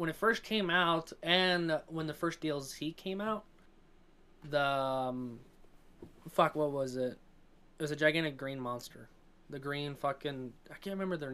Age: 20-39